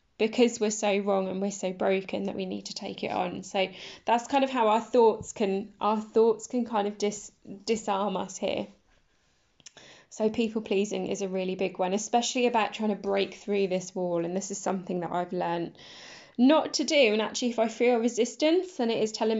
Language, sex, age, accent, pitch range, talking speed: English, female, 10-29, British, 190-225 Hz, 210 wpm